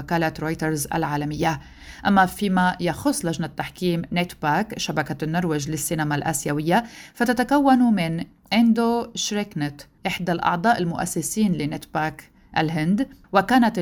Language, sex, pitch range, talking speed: Arabic, female, 160-195 Hz, 100 wpm